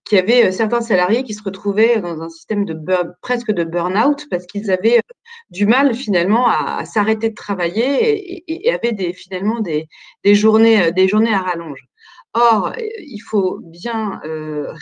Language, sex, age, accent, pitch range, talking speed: French, female, 30-49, French, 185-240 Hz, 200 wpm